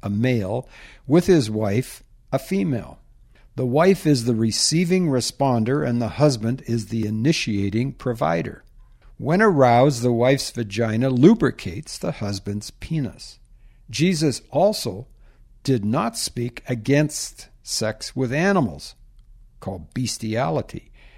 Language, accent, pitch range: English, American, 115-145 Hz